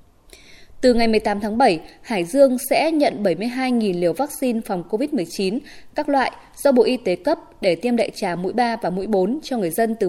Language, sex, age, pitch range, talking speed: Vietnamese, female, 20-39, 205-265 Hz, 200 wpm